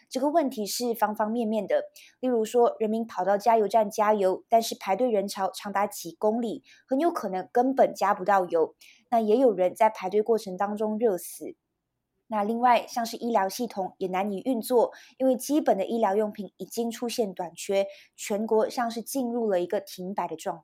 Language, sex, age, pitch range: Chinese, female, 20-39, 195-235 Hz